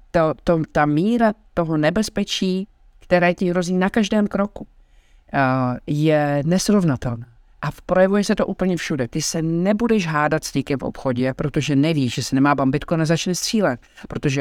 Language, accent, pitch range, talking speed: Czech, native, 135-160 Hz, 160 wpm